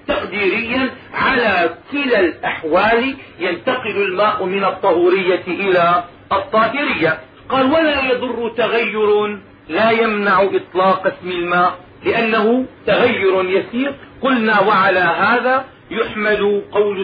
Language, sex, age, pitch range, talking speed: Arabic, male, 40-59, 190-245 Hz, 95 wpm